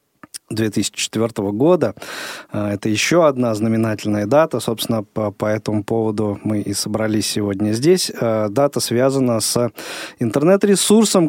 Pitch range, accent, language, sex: 110-145 Hz, native, Russian, male